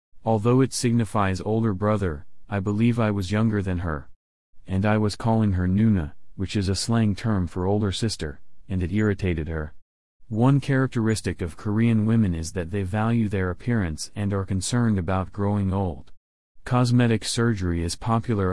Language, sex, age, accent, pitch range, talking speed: English, male, 40-59, American, 90-110 Hz, 165 wpm